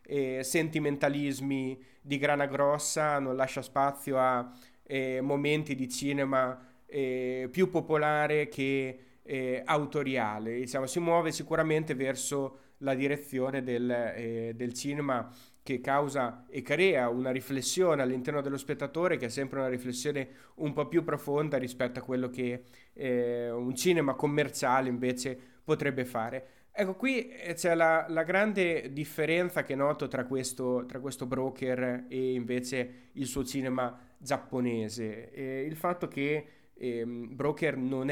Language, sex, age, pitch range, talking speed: Italian, male, 30-49, 130-145 Hz, 130 wpm